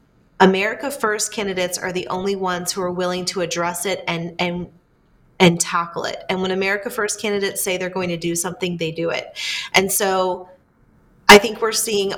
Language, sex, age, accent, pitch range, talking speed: English, female, 30-49, American, 185-210 Hz, 185 wpm